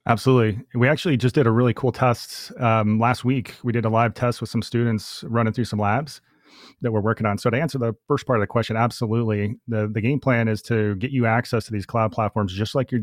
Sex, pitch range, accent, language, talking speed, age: male, 105-120 Hz, American, English, 250 wpm, 30-49